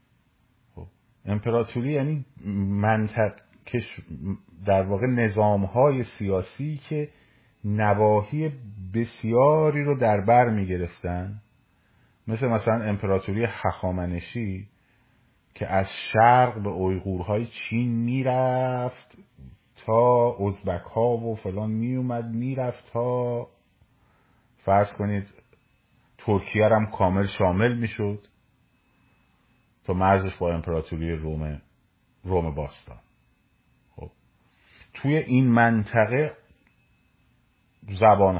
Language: Persian